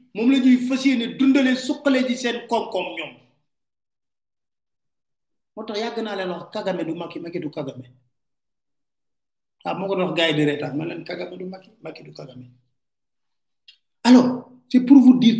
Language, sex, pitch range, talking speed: French, male, 175-275 Hz, 155 wpm